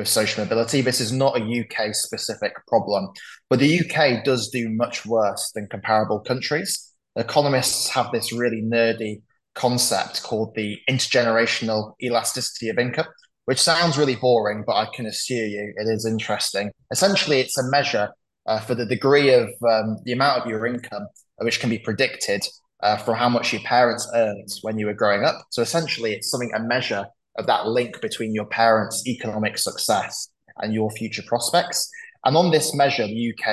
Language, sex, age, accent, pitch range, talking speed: English, male, 20-39, British, 105-125 Hz, 175 wpm